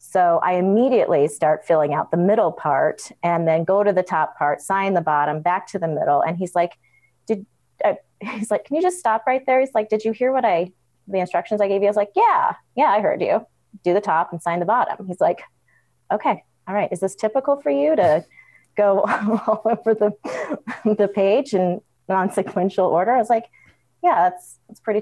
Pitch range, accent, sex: 160-220 Hz, American, female